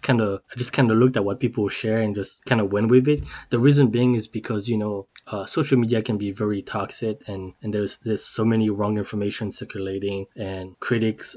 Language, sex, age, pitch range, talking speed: English, male, 20-39, 100-120 Hz, 225 wpm